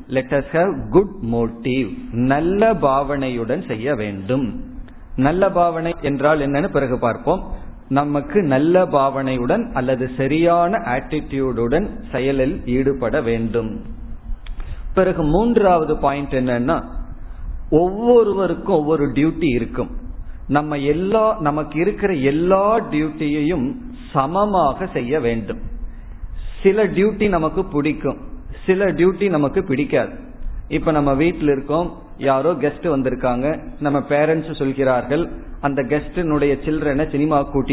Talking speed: 55 wpm